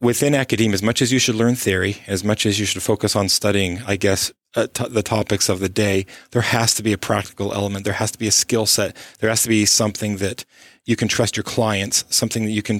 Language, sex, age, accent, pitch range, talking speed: English, male, 30-49, American, 100-115 Hz, 250 wpm